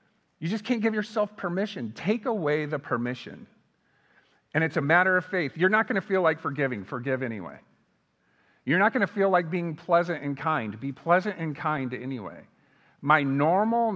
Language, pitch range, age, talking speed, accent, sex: English, 130-195 Hz, 50-69, 180 wpm, American, male